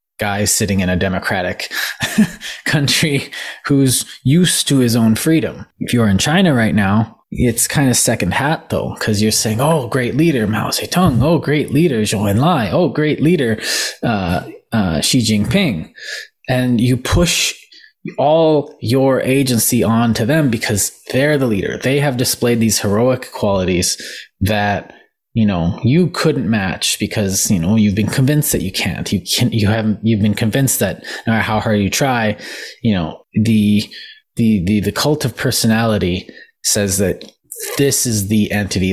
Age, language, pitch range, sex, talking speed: 20-39, English, 105-140 Hz, male, 165 wpm